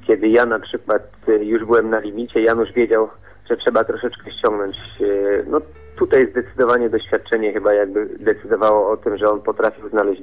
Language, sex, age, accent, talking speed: Polish, male, 30-49, native, 160 wpm